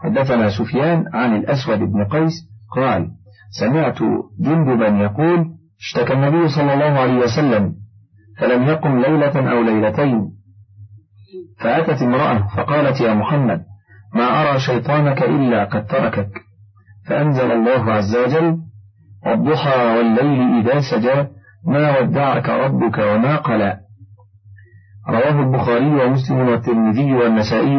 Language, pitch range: Arabic, 105-140 Hz